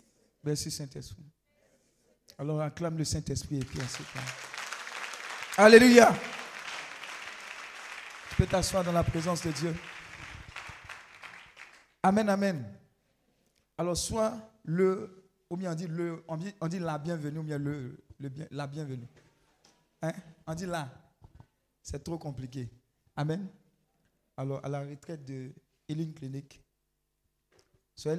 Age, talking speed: 50-69, 115 wpm